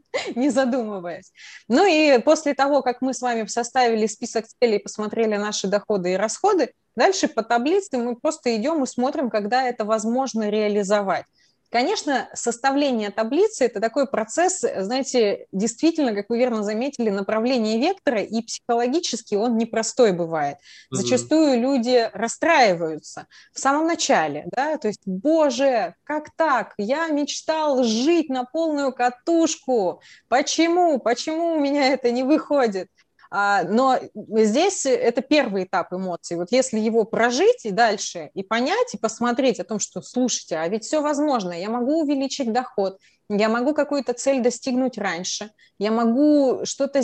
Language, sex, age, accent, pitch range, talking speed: Russian, female, 20-39, native, 210-275 Hz, 140 wpm